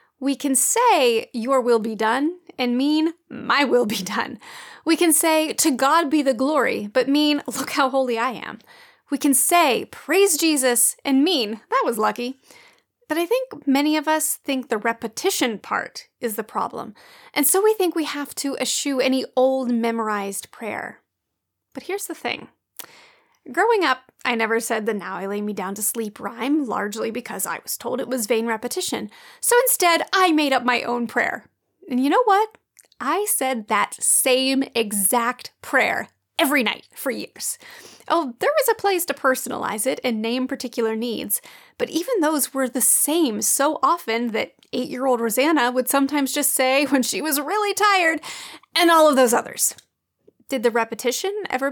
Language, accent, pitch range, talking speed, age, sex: English, American, 240-335 Hz, 175 wpm, 30-49, female